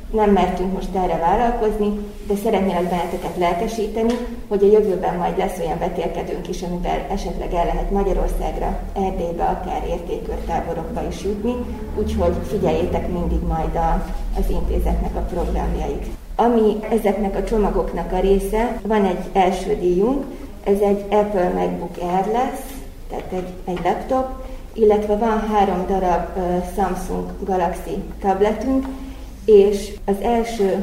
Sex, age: female, 20-39